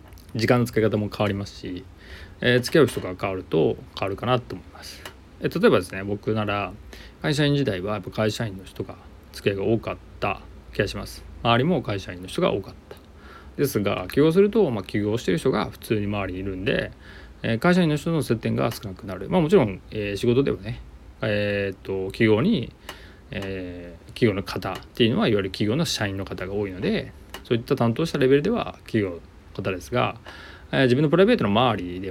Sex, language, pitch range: male, Japanese, 90-120 Hz